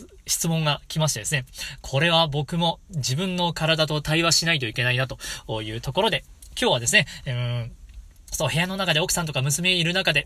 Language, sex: Japanese, male